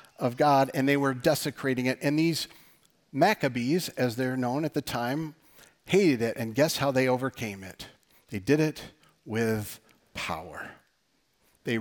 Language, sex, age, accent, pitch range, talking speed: English, male, 50-69, American, 120-150 Hz, 150 wpm